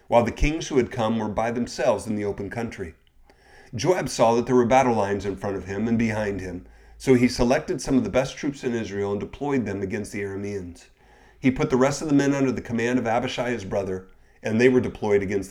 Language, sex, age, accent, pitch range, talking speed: English, male, 30-49, American, 100-130 Hz, 240 wpm